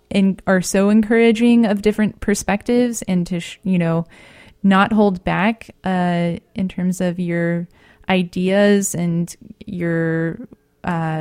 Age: 20-39